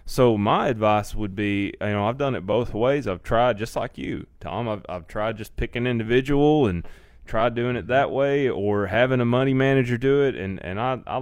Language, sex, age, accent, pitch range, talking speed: English, male, 30-49, American, 100-135 Hz, 225 wpm